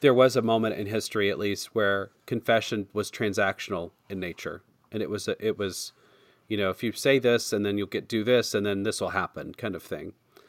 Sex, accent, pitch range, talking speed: male, American, 100-120 Hz, 225 wpm